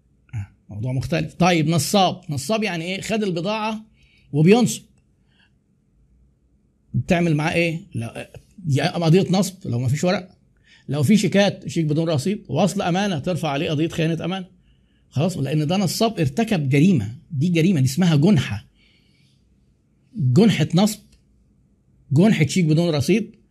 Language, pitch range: Arabic, 135-200 Hz